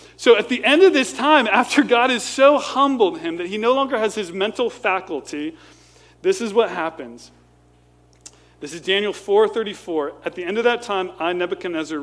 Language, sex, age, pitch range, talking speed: English, male, 40-59, 150-250 Hz, 195 wpm